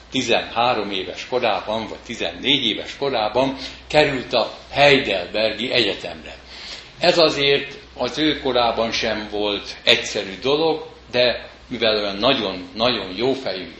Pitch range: 115-150 Hz